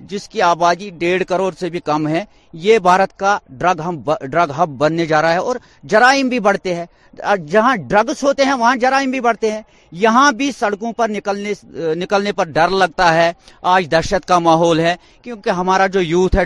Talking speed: 200 wpm